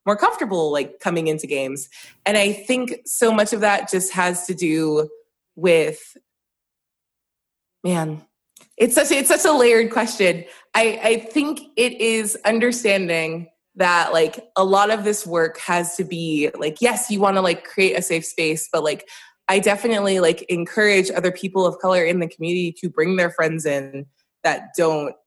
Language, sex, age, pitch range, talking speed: English, female, 20-39, 165-215 Hz, 175 wpm